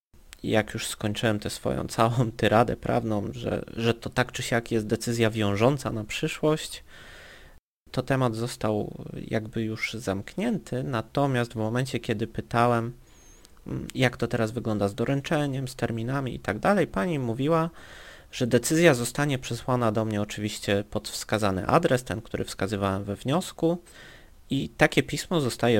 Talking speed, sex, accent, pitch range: 145 wpm, male, native, 105-135 Hz